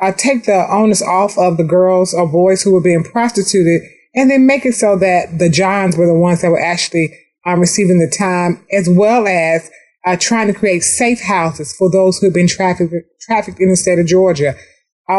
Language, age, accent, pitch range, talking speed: English, 30-49, American, 175-205 Hz, 215 wpm